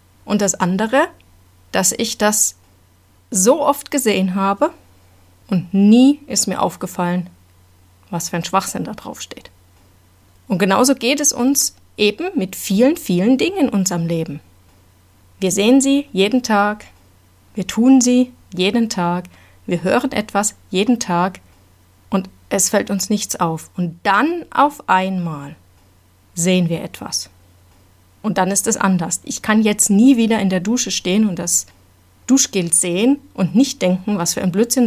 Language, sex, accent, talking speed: German, female, German, 150 wpm